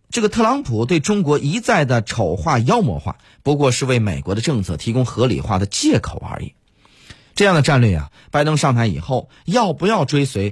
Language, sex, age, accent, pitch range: Chinese, male, 30-49, native, 110-165 Hz